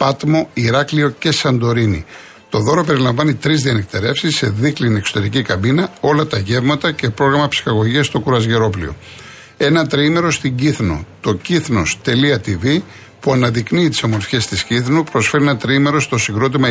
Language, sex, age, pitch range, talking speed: Greek, male, 60-79, 110-145 Hz, 135 wpm